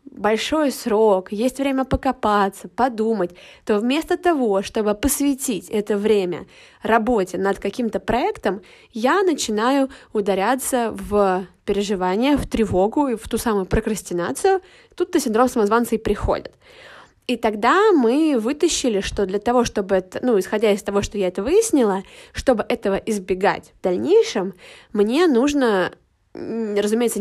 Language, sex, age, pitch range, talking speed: Russian, female, 20-39, 200-270 Hz, 130 wpm